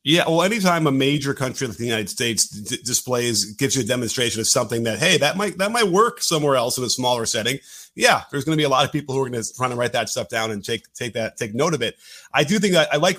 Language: English